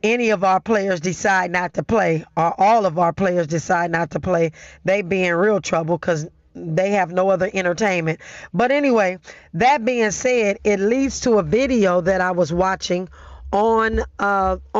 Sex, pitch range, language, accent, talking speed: female, 185-220 Hz, English, American, 180 wpm